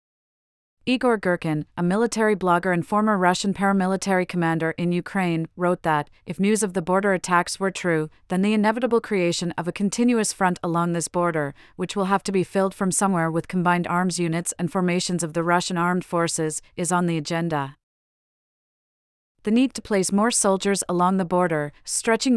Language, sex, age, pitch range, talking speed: English, female, 30-49, 170-195 Hz, 175 wpm